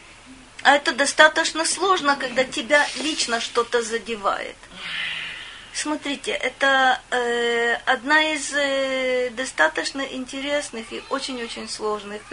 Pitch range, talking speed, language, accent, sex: 225-275 Hz, 95 wpm, Russian, native, female